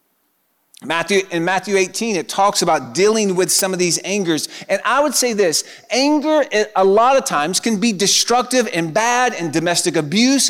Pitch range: 180-230 Hz